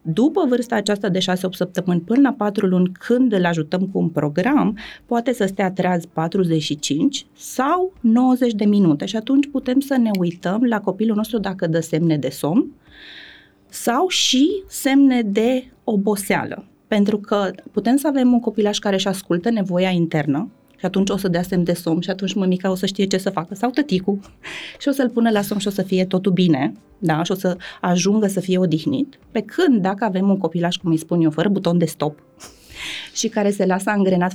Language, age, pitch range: Romanian, 30-49, 180-235 Hz